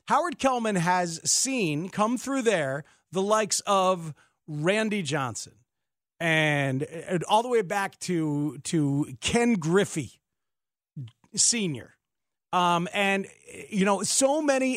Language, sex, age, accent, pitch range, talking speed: English, male, 40-59, American, 155-205 Hz, 120 wpm